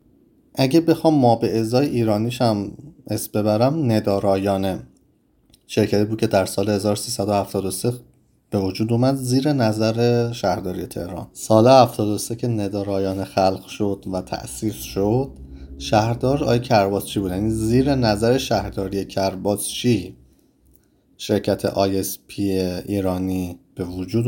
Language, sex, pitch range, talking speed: Persian, male, 95-120 Hz, 115 wpm